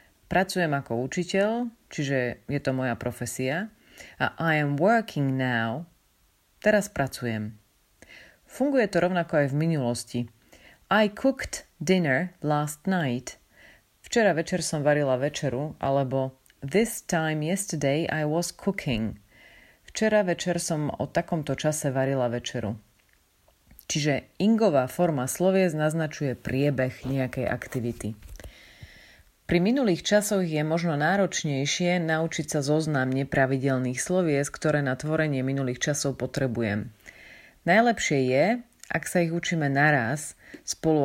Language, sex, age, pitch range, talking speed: Slovak, female, 30-49, 130-170 Hz, 115 wpm